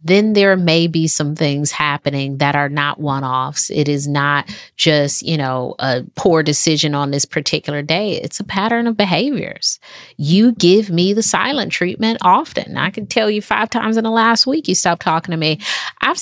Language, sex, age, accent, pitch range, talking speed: English, female, 30-49, American, 150-205 Hz, 190 wpm